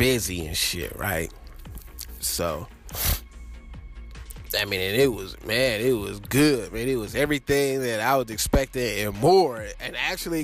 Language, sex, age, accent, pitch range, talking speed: English, male, 20-39, American, 90-135 Hz, 150 wpm